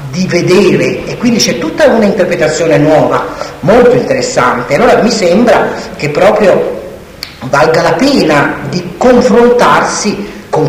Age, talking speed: 40-59, 125 wpm